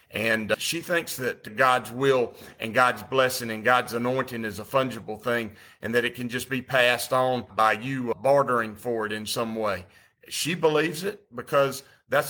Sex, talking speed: male, 180 wpm